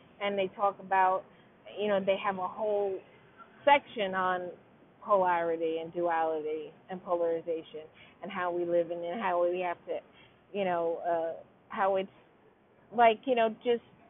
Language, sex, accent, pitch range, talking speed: English, female, American, 195-260 Hz, 160 wpm